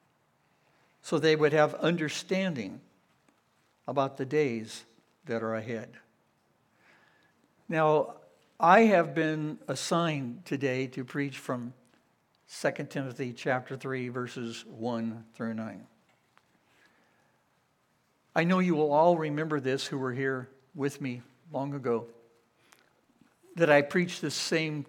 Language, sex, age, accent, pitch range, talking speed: English, male, 60-79, American, 130-170 Hz, 110 wpm